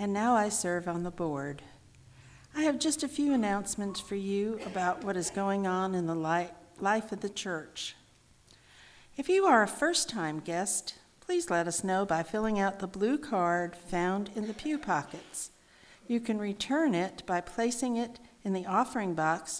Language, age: English, 50-69